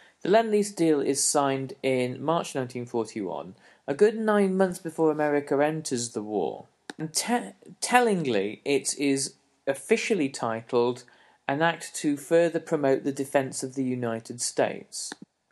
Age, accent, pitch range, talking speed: 40-59, British, 125-155 Hz, 130 wpm